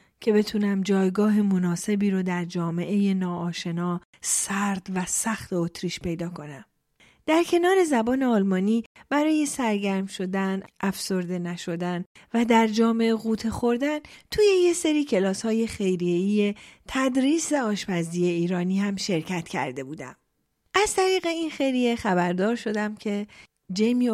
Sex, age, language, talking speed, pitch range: female, 40-59, Persian, 120 wpm, 180-250 Hz